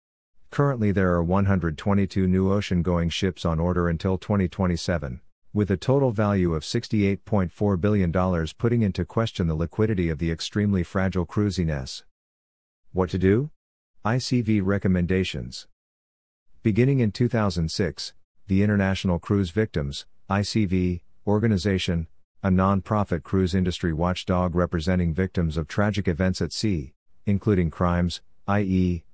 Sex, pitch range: male, 85-100 Hz